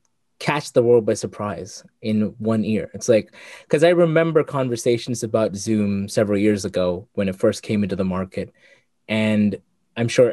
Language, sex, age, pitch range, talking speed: English, male, 20-39, 105-130 Hz, 170 wpm